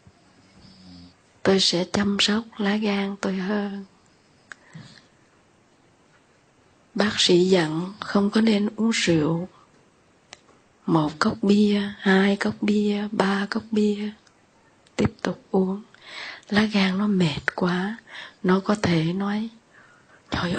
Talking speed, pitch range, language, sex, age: 110 wpm, 185-210 Hz, Vietnamese, female, 20-39